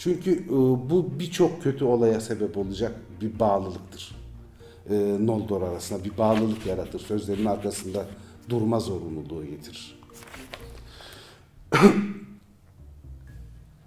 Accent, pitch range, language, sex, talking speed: native, 95-130 Hz, Turkish, male, 85 wpm